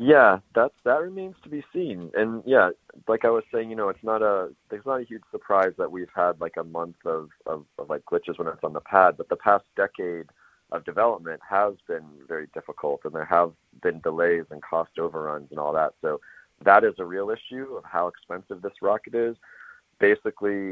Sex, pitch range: male, 85-115 Hz